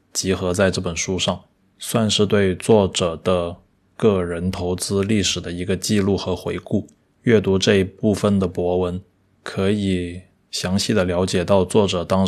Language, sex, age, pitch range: Chinese, male, 20-39, 90-105 Hz